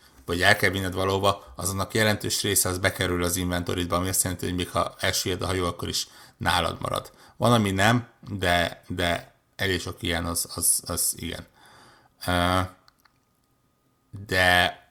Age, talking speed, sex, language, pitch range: 60-79, 155 wpm, male, Hungarian, 90-105 Hz